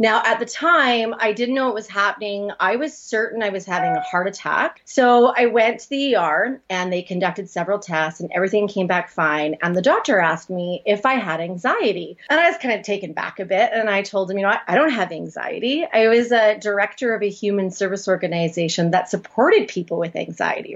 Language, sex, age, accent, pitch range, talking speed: English, female, 30-49, American, 195-245 Hz, 225 wpm